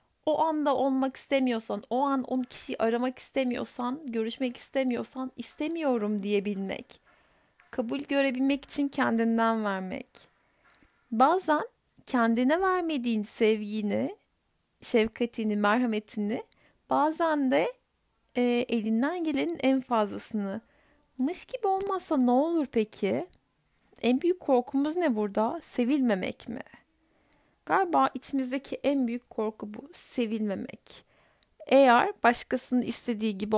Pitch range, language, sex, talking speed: 225-275 Hz, Turkish, female, 100 wpm